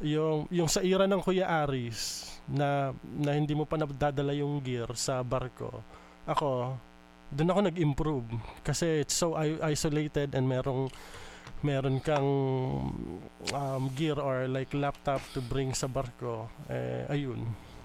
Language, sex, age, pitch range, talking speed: Filipino, male, 20-39, 120-150 Hz, 140 wpm